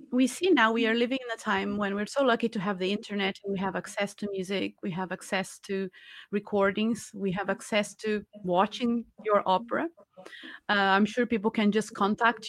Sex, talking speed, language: female, 200 wpm, English